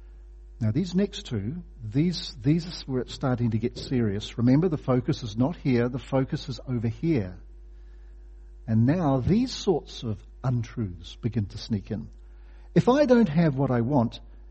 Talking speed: 170 wpm